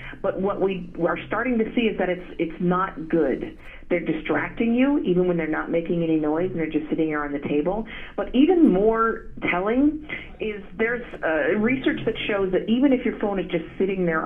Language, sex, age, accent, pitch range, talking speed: English, female, 40-59, American, 165-220 Hz, 210 wpm